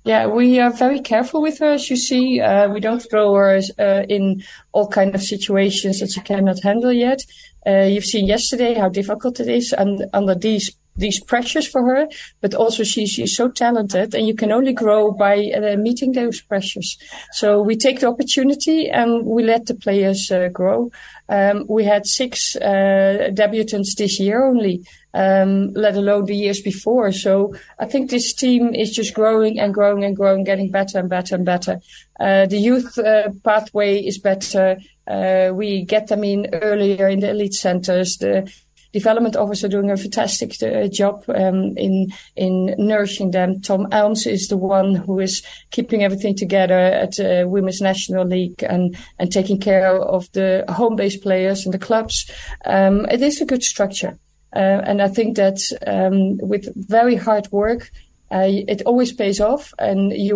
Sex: female